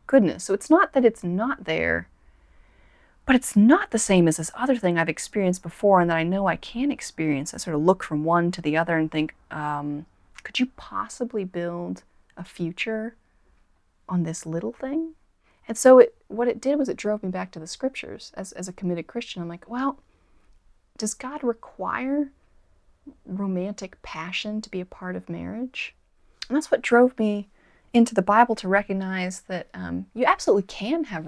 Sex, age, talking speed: female, 30-49, 185 wpm